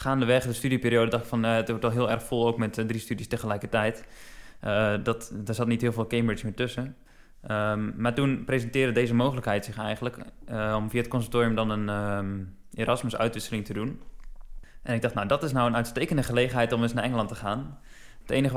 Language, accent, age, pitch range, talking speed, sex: Dutch, Dutch, 20-39, 110-125 Hz, 205 wpm, male